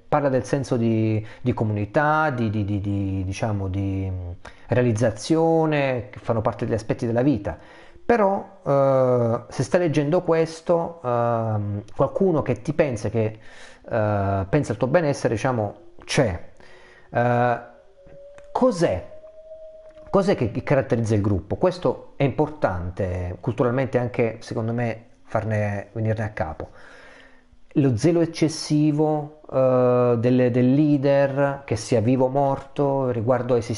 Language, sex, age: Italian, male, 40-59